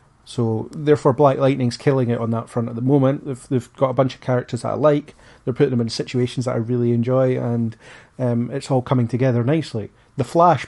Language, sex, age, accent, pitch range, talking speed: English, male, 30-49, British, 120-135 Hz, 225 wpm